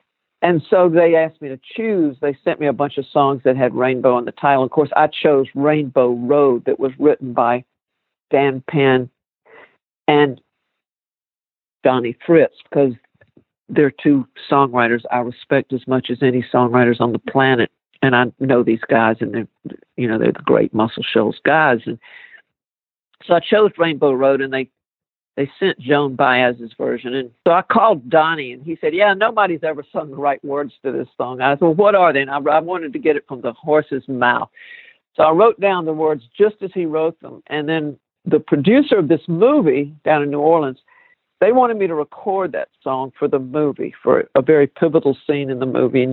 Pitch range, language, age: 130-165 Hz, English, 50-69